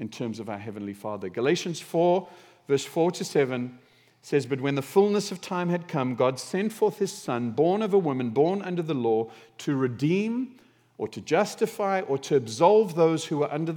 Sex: male